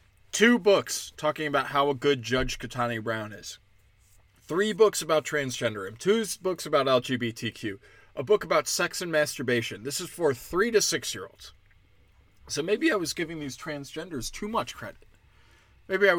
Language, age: English, 20-39